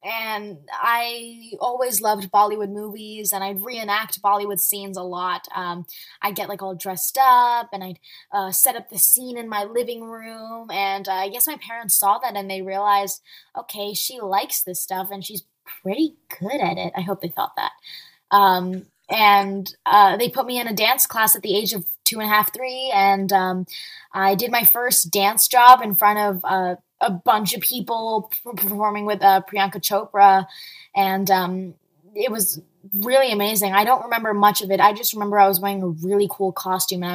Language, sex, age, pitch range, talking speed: English, female, 10-29, 195-225 Hz, 200 wpm